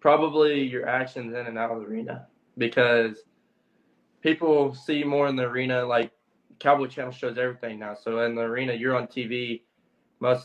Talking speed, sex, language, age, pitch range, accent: 170 wpm, male, English, 20-39, 115-130 Hz, American